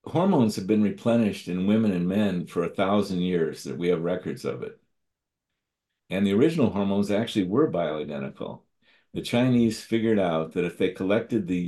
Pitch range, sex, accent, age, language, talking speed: 95-115 Hz, male, American, 50-69, English, 175 wpm